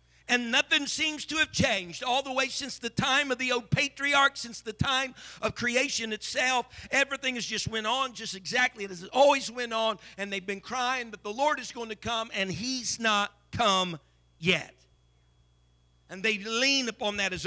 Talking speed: 195 wpm